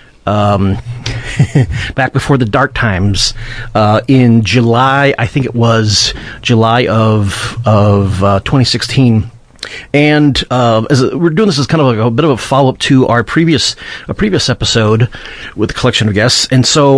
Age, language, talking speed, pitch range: 40-59, English, 175 wpm, 115-140 Hz